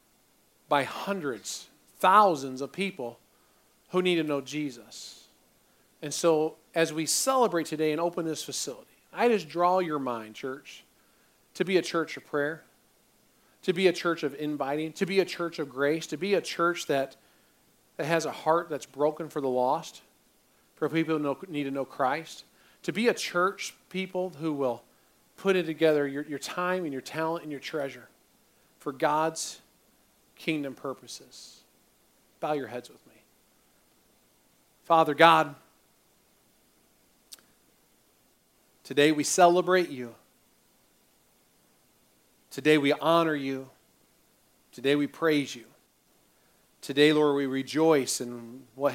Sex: male